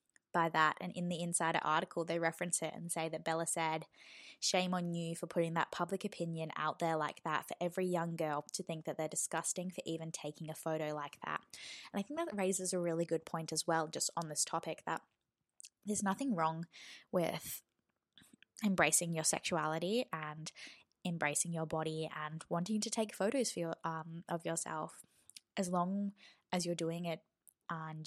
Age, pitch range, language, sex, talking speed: 20-39, 160-180 Hz, English, female, 185 wpm